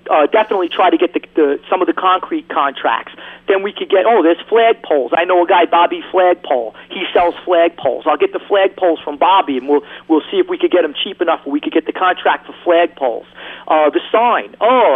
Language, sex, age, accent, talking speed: English, male, 40-59, American, 230 wpm